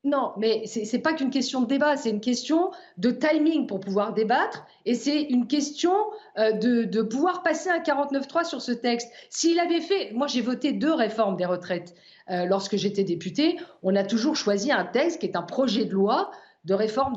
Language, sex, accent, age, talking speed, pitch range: French, female, French, 50-69, 205 wpm, 220-320 Hz